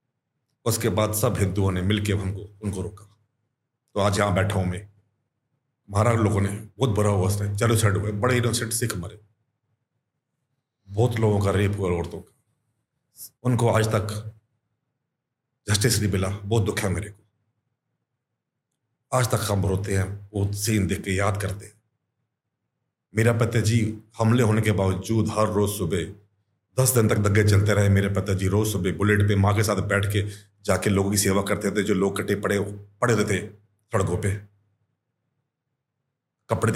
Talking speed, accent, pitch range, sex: 155 wpm, native, 100-125 Hz, male